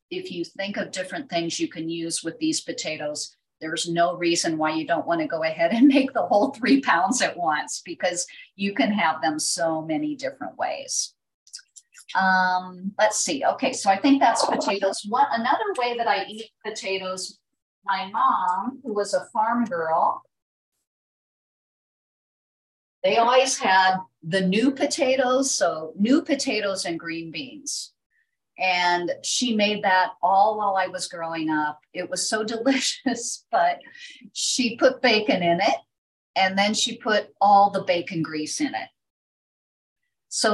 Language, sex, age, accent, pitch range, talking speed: English, female, 50-69, American, 175-255 Hz, 155 wpm